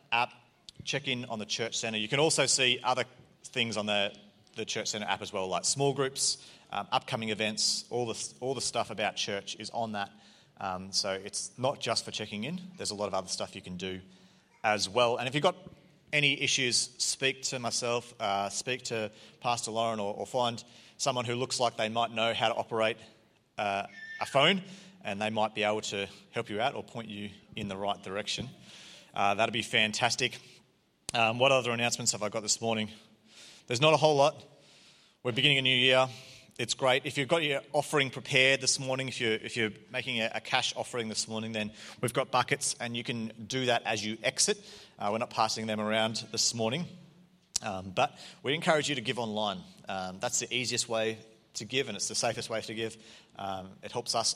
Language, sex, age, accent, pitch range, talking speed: English, male, 30-49, Australian, 110-130 Hz, 210 wpm